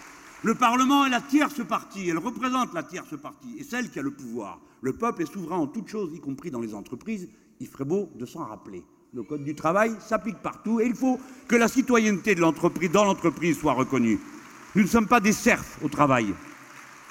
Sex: male